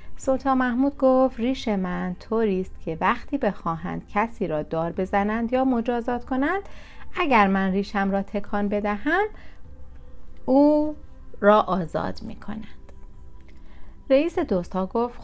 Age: 30-49